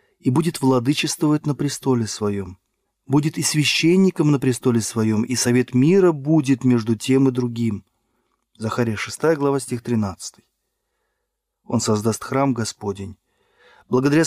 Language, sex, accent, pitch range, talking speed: Russian, male, native, 115-155 Hz, 125 wpm